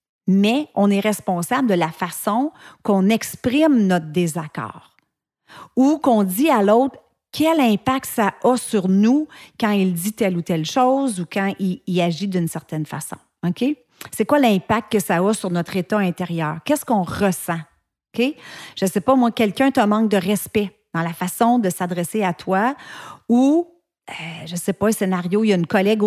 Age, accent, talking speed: 40-59, Canadian, 190 wpm